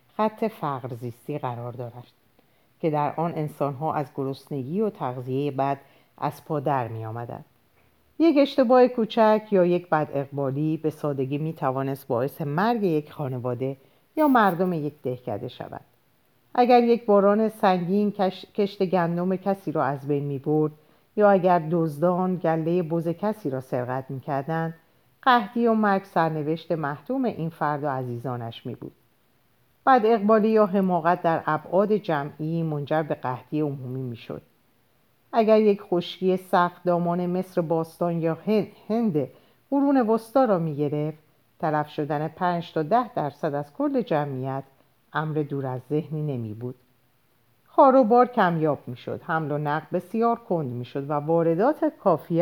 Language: Persian